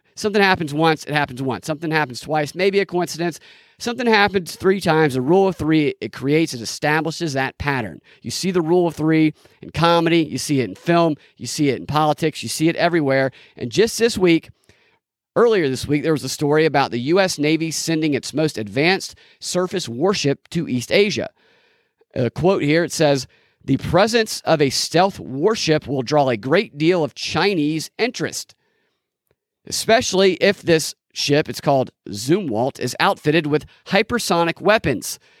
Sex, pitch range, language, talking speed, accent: male, 135-180 Hz, English, 175 wpm, American